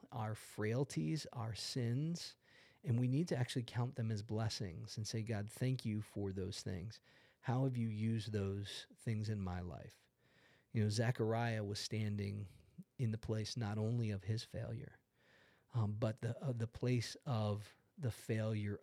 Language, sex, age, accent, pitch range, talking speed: English, male, 40-59, American, 105-125 Hz, 165 wpm